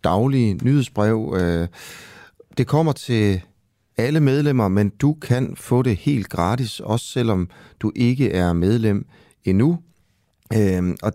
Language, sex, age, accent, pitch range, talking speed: Danish, male, 30-49, native, 95-125 Hz, 120 wpm